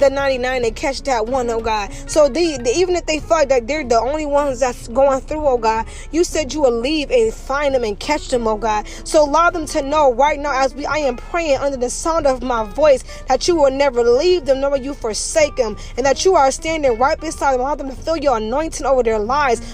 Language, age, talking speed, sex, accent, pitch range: English, 20-39, 255 wpm, female, American, 265-320 Hz